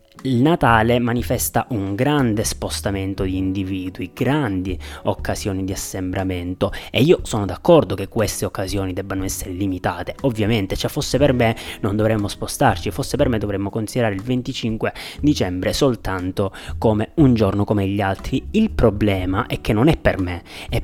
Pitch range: 95-135 Hz